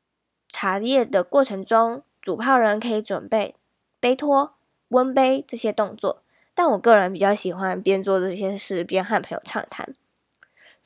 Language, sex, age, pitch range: Chinese, female, 10-29, 205-285 Hz